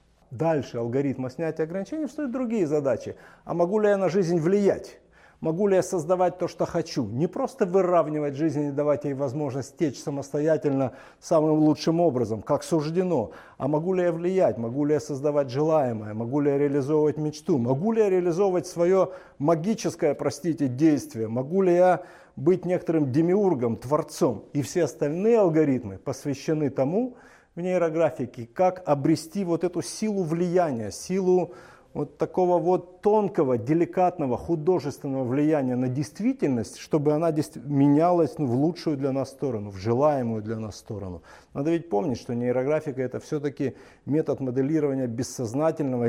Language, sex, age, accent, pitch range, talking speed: Russian, male, 50-69, native, 130-175 Hz, 145 wpm